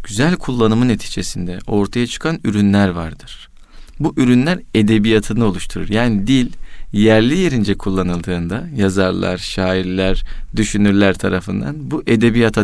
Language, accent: Turkish, native